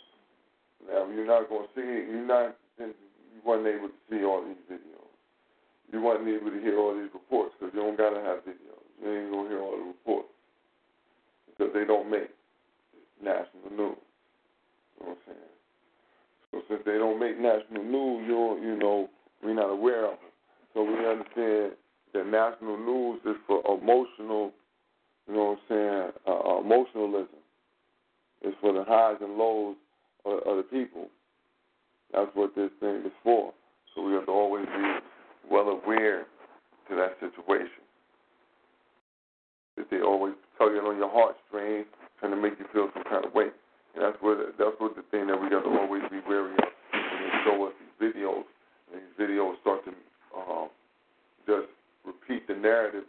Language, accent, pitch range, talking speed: English, American, 100-110 Hz, 175 wpm